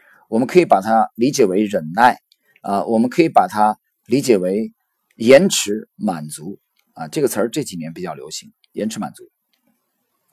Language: Chinese